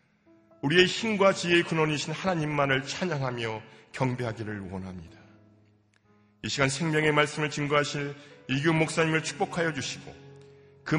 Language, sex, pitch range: Korean, male, 90-145 Hz